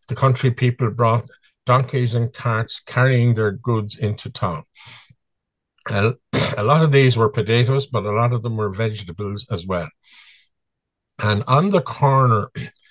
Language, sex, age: English, male, 50-69